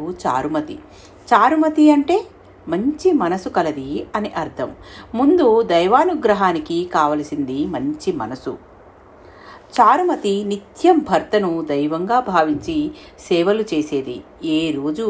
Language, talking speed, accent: Telugu, 85 wpm, native